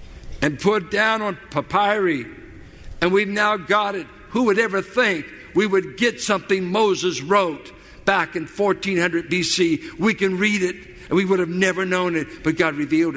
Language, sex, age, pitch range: English, male, 60-79, 170-225 Hz